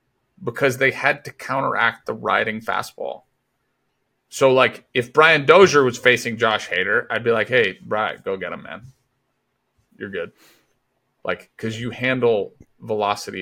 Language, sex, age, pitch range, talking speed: English, male, 30-49, 100-135 Hz, 150 wpm